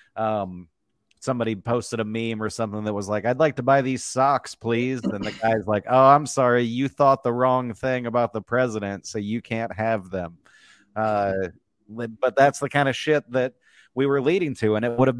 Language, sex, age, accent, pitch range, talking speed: English, male, 30-49, American, 115-145 Hz, 210 wpm